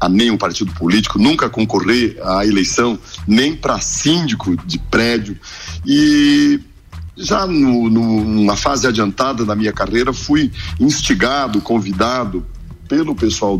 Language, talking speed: Portuguese, 125 wpm